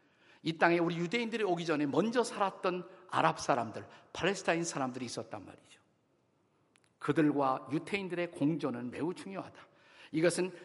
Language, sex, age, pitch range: Korean, male, 50-69, 145-195 Hz